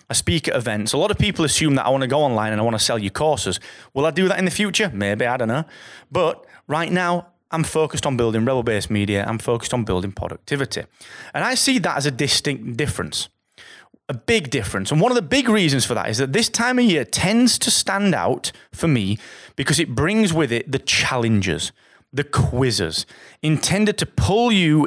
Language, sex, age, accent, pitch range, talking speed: English, male, 30-49, British, 115-175 Hz, 220 wpm